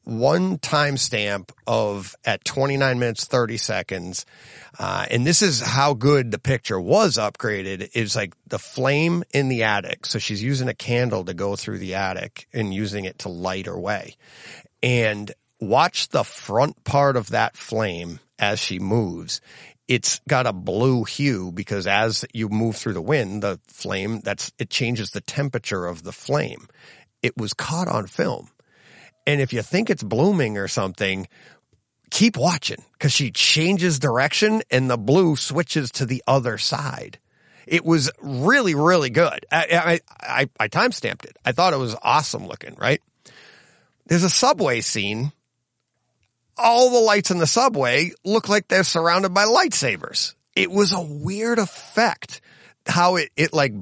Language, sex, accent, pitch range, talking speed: English, male, American, 110-170 Hz, 160 wpm